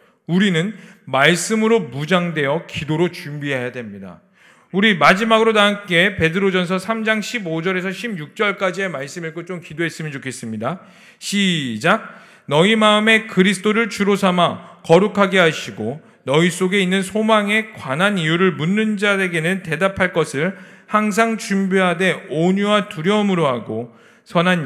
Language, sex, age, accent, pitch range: Korean, male, 40-59, native, 165-220 Hz